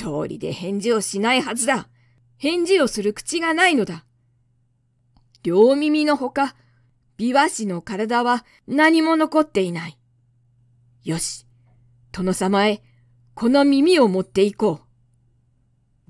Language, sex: Japanese, female